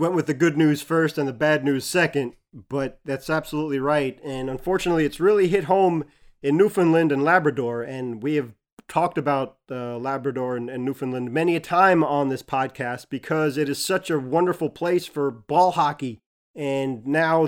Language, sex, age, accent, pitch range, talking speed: English, male, 30-49, American, 140-165 Hz, 180 wpm